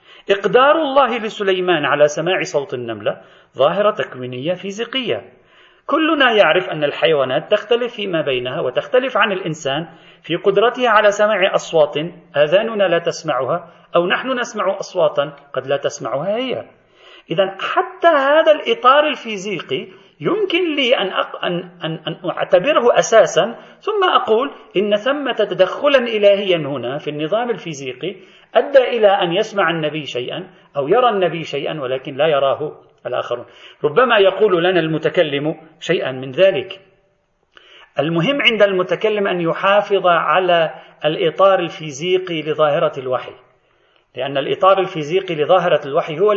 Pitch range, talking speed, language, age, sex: 160-225 Hz, 120 wpm, Arabic, 40-59, male